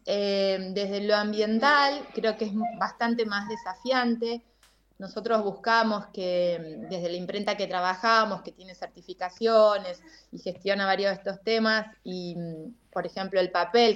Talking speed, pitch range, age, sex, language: 140 wpm, 185-220 Hz, 20-39, female, Spanish